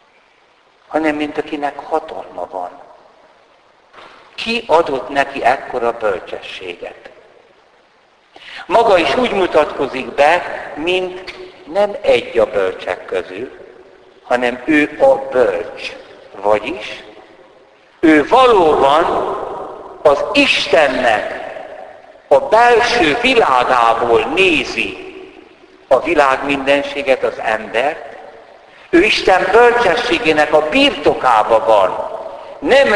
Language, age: Hungarian, 60-79